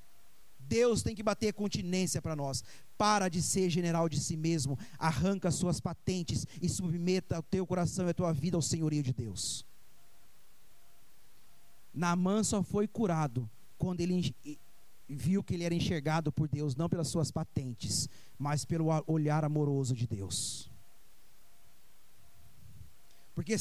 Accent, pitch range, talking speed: Brazilian, 140-180 Hz, 135 wpm